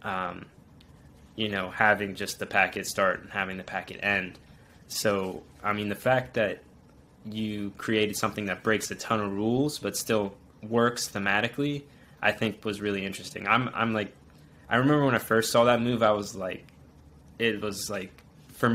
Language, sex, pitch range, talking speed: English, male, 95-110 Hz, 175 wpm